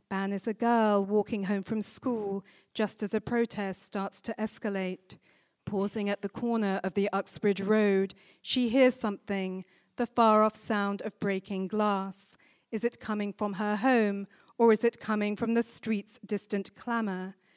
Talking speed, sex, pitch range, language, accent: 165 wpm, female, 200-240 Hz, English, British